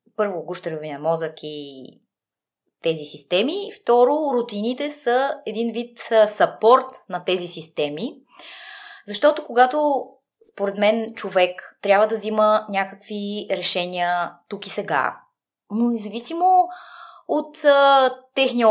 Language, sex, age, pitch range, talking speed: Bulgarian, female, 20-39, 195-260 Hz, 105 wpm